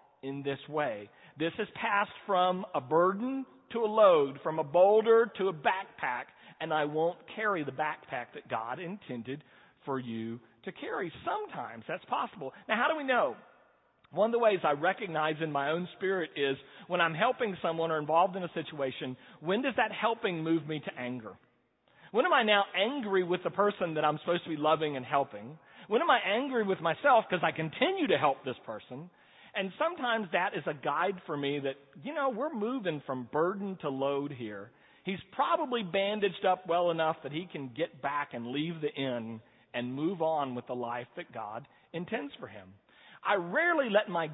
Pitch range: 140-200 Hz